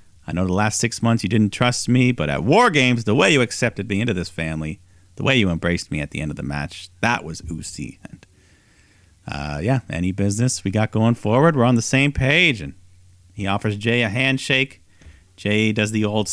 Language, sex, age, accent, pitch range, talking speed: English, male, 40-59, American, 90-120 Hz, 220 wpm